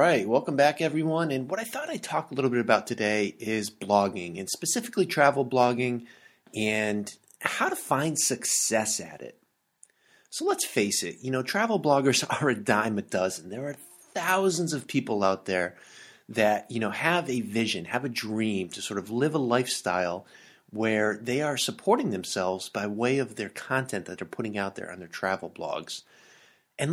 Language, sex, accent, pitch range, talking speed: English, male, American, 105-145 Hz, 185 wpm